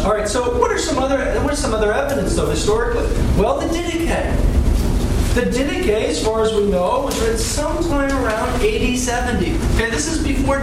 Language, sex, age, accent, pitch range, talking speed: English, male, 40-59, American, 205-270 Hz, 165 wpm